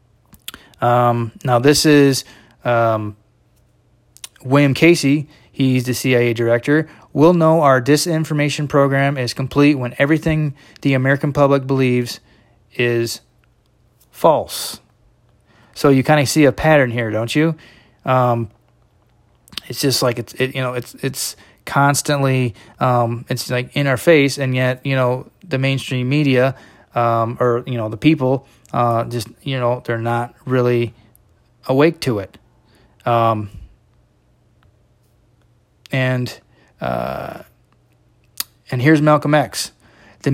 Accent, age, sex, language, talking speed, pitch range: American, 20-39, male, English, 125 wpm, 120-145 Hz